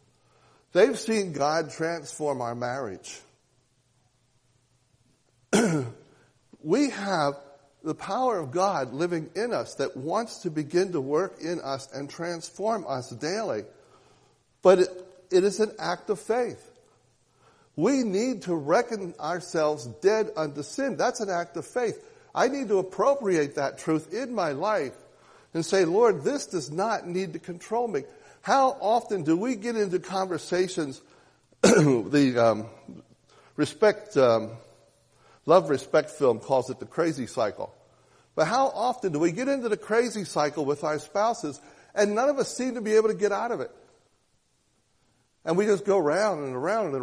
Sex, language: male, English